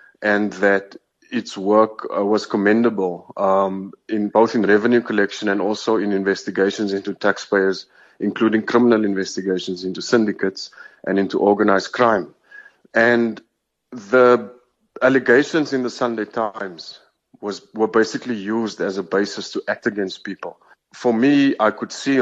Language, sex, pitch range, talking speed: English, male, 100-120 Hz, 135 wpm